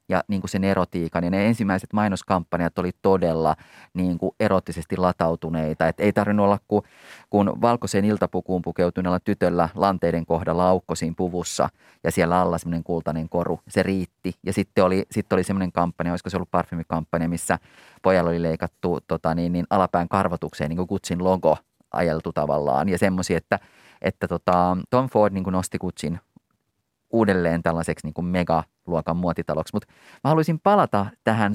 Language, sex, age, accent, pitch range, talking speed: Finnish, male, 30-49, native, 85-110 Hz, 155 wpm